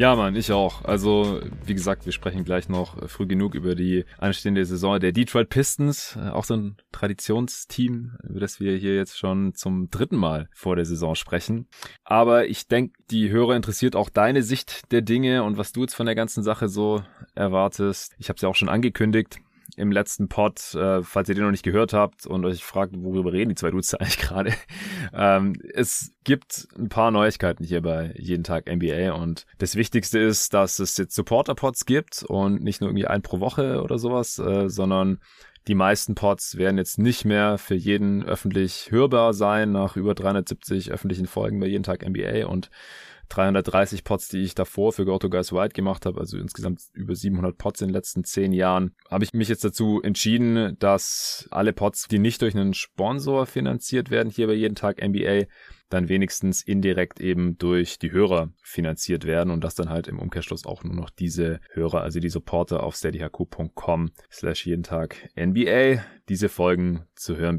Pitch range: 90-110 Hz